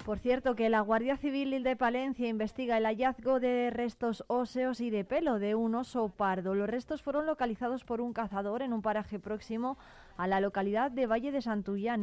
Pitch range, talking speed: 200-235 Hz, 195 wpm